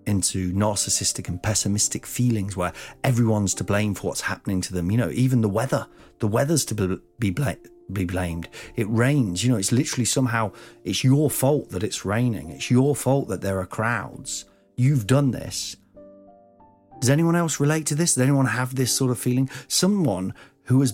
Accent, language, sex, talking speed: British, English, male, 185 wpm